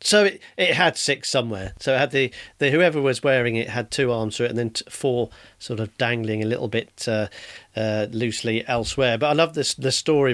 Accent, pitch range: British, 120-145 Hz